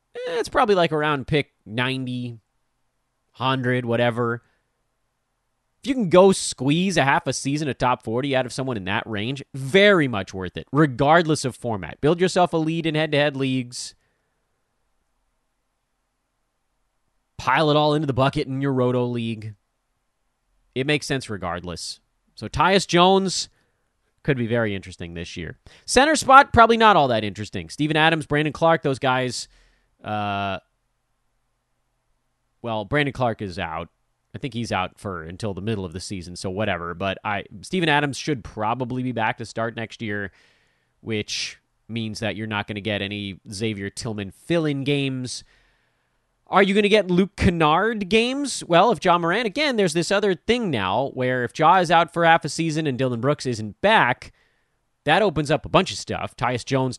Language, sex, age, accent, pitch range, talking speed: English, male, 30-49, American, 110-160 Hz, 170 wpm